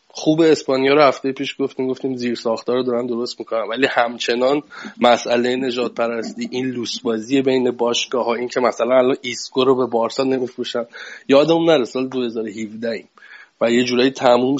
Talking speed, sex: 165 wpm, male